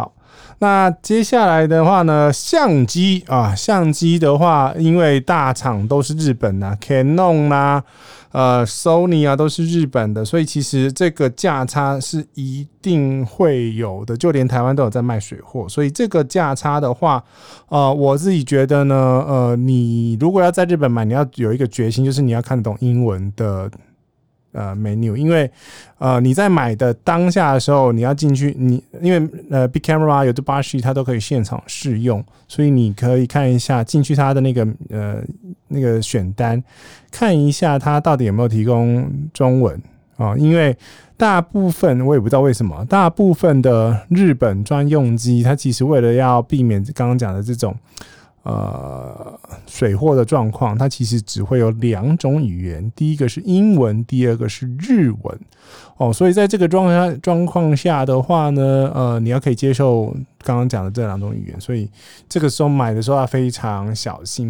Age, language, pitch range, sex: 20-39, Chinese, 120-155 Hz, male